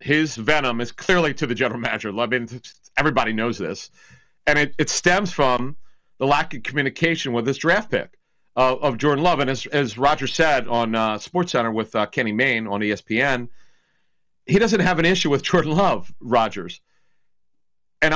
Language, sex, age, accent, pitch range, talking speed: English, male, 40-59, American, 125-160 Hz, 180 wpm